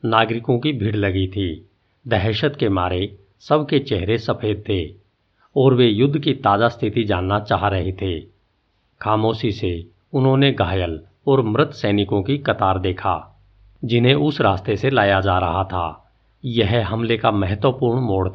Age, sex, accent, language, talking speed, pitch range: 50-69, male, native, Hindi, 145 wpm, 100-130 Hz